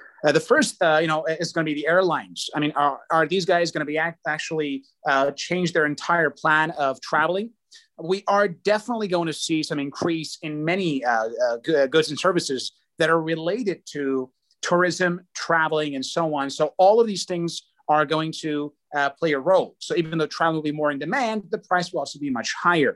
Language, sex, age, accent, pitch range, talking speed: English, male, 30-49, American, 145-180 Hz, 215 wpm